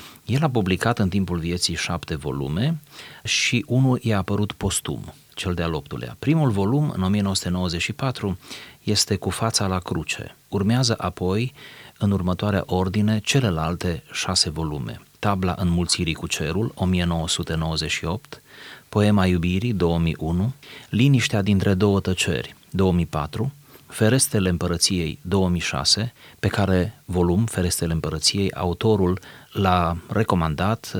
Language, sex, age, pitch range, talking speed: Romanian, male, 30-49, 90-110 Hz, 110 wpm